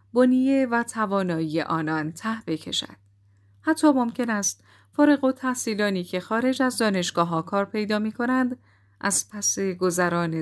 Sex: female